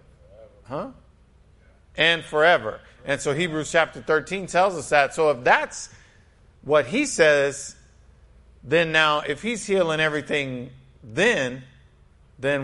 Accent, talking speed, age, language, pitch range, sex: American, 120 wpm, 50-69, English, 120-155 Hz, male